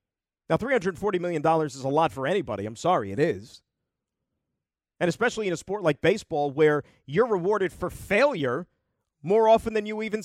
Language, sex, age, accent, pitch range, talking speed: English, male, 40-59, American, 185-260 Hz, 170 wpm